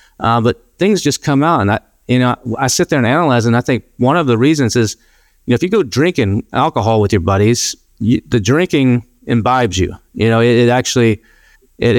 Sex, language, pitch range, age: male, English, 115-130 Hz, 40-59